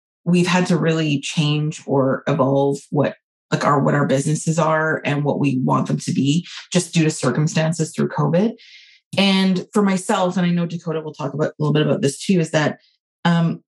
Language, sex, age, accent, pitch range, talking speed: English, female, 30-49, American, 150-185 Hz, 200 wpm